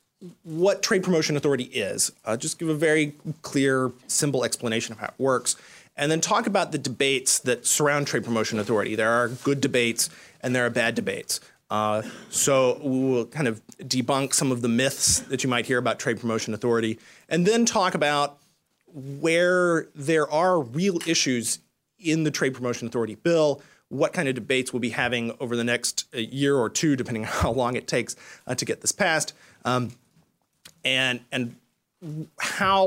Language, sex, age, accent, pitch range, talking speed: English, male, 30-49, American, 120-160 Hz, 175 wpm